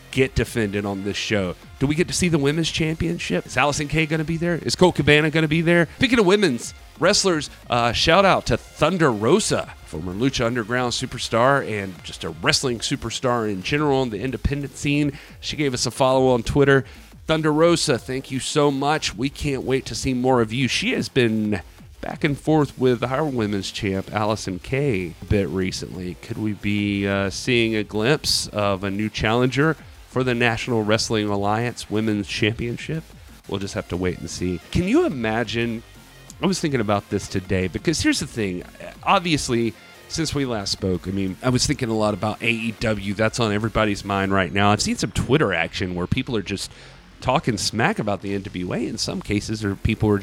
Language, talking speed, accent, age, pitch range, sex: English, 200 wpm, American, 40-59, 100-140 Hz, male